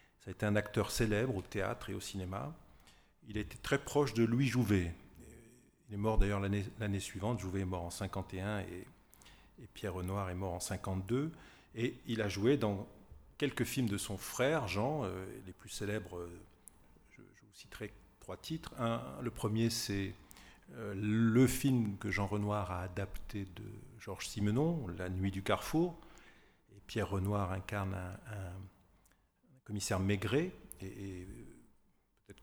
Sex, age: male, 40-59